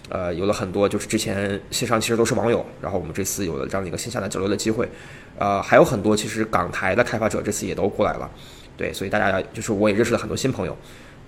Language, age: Chinese, 20-39